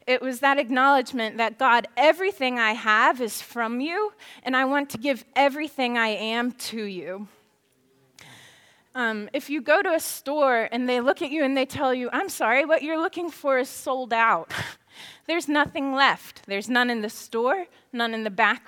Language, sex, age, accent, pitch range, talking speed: English, female, 20-39, American, 225-300 Hz, 190 wpm